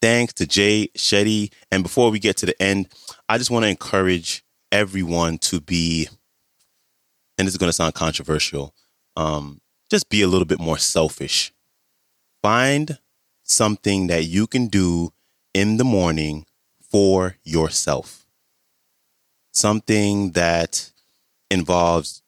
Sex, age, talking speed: male, 30-49, 130 wpm